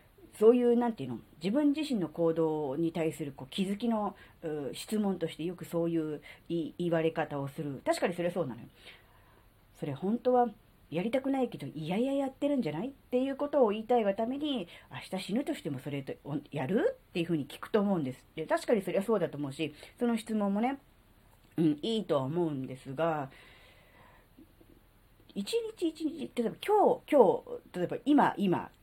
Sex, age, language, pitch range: female, 40-59, Japanese, 150-255 Hz